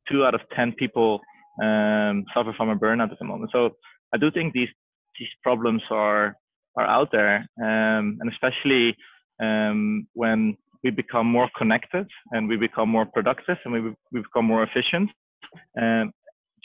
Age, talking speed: 20-39, 160 wpm